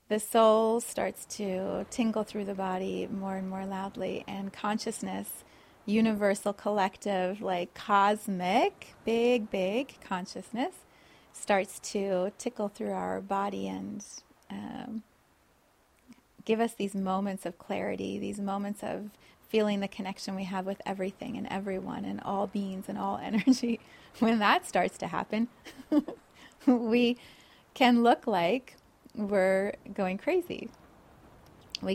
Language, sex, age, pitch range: English, female, 30-49, 195-225 Hz